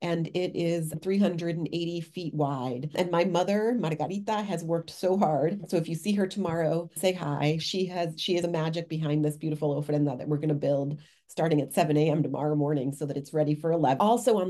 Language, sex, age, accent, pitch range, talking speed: English, female, 40-59, American, 160-190 Hz, 210 wpm